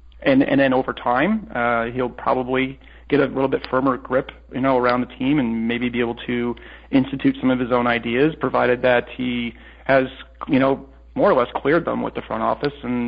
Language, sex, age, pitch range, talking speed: English, male, 40-59, 120-140 Hz, 210 wpm